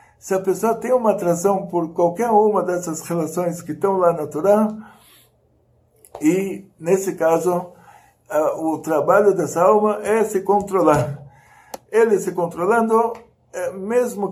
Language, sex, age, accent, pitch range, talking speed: Portuguese, male, 60-79, Brazilian, 165-210 Hz, 125 wpm